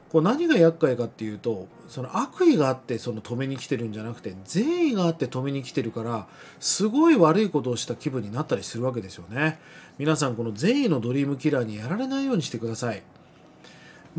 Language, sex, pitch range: Japanese, male, 120-200 Hz